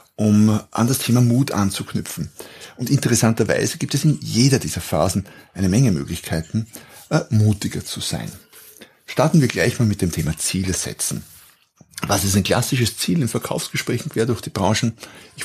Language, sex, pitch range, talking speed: German, male, 95-120 Hz, 160 wpm